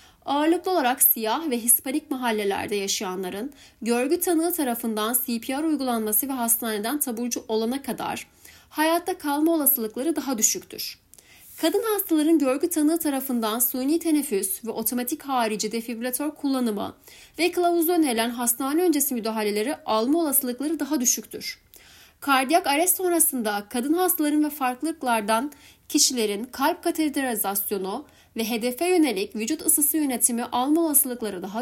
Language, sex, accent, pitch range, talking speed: Turkish, female, native, 225-305 Hz, 120 wpm